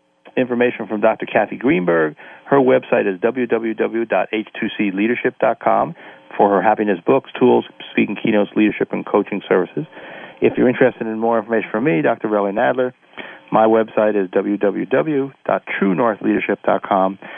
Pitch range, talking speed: 100-115 Hz, 120 wpm